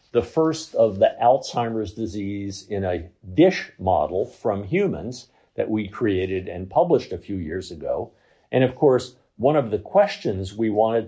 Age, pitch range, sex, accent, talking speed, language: 50-69, 100-125 Hz, male, American, 160 wpm, English